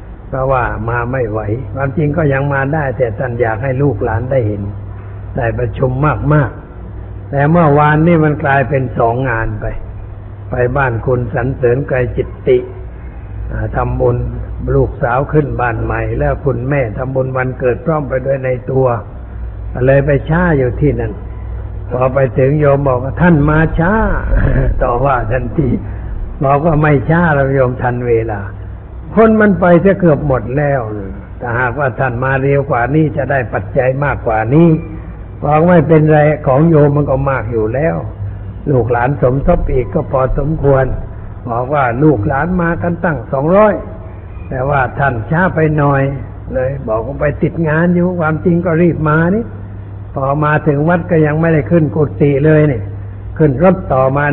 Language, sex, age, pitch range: Thai, male, 60-79, 110-150 Hz